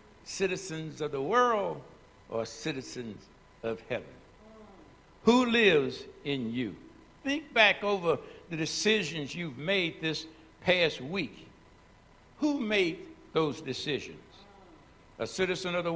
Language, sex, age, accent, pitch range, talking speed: English, male, 60-79, American, 150-205 Hz, 115 wpm